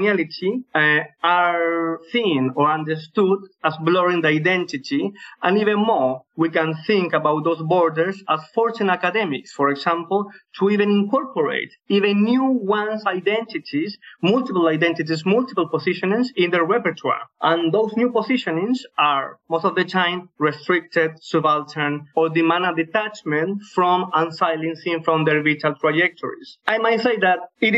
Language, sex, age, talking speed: English, male, 30-49, 135 wpm